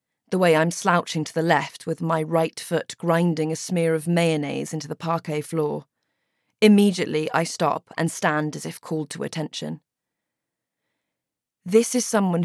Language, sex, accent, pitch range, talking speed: English, female, British, 160-210 Hz, 160 wpm